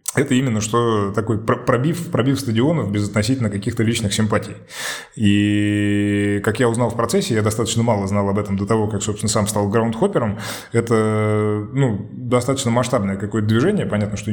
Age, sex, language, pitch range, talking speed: 20-39, male, Russian, 105-115 Hz, 170 wpm